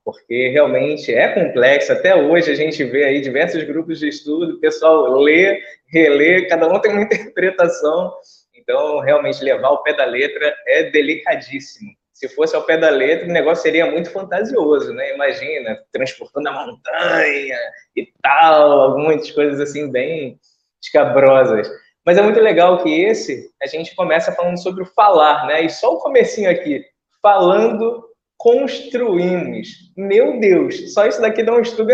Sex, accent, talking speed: male, Brazilian, 160 wpm